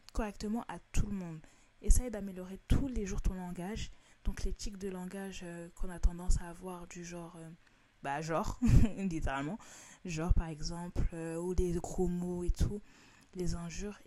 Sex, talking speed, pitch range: female, 170 wpm, 170-215 Hz